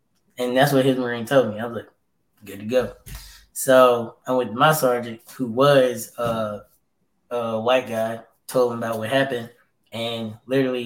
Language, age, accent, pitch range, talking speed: English, 10-29, American, 115-135 Hz, 175 wpm